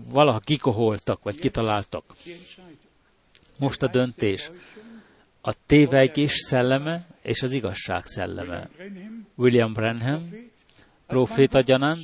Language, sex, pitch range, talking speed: Hungarian, male, 120-165 Hz, 85 wpm